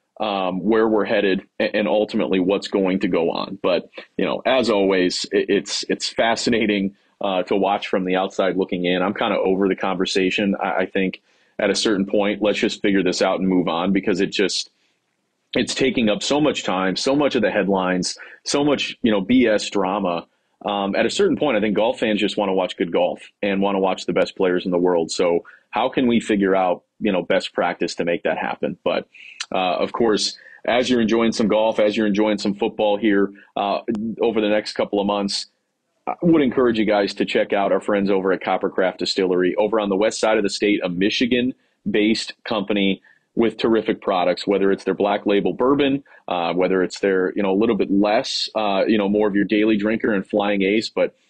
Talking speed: 215 wpm